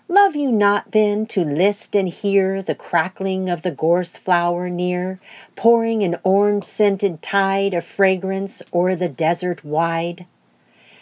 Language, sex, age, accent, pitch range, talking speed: English, female, 50-69, American, 165-205 Hz, 135 wpm